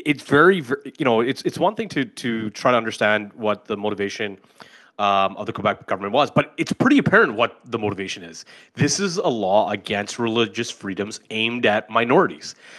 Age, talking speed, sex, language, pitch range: 30-49, 190 wpm, male, English, 110-140 Hz